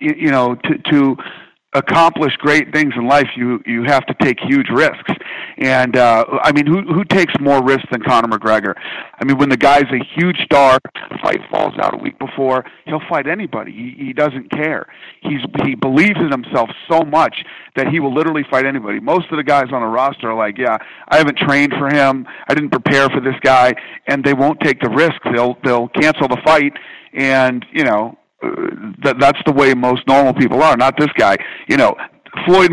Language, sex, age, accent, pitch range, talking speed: English, male, 40-59, American, 125-150 Hz, 205 wpm